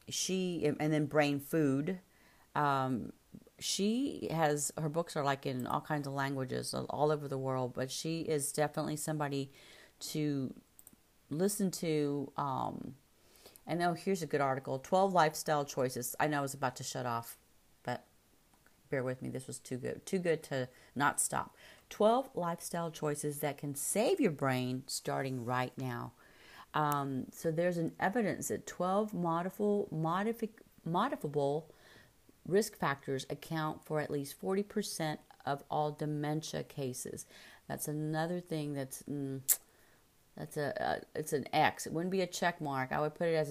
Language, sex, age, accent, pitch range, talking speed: English, female, 40-59, American, 140-165 Hz, 155 wpm